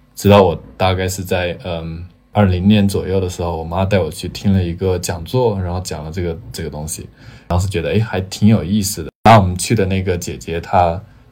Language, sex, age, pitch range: Chinese, male, 20-39, 90-105 Hz